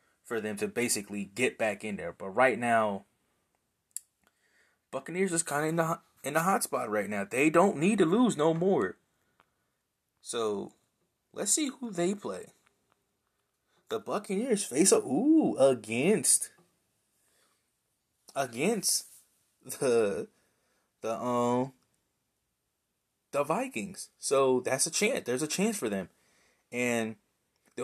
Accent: American